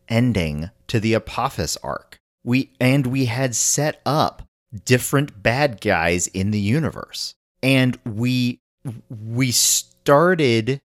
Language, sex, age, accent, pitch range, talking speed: English, male, 40-59, American, 105-170 Hz, 115 wpm